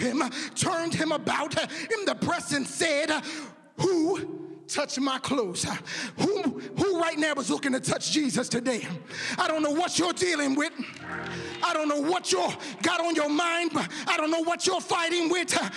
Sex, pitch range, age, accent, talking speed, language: male, 285-355 Hz, 30-49, American, 180 wpm, English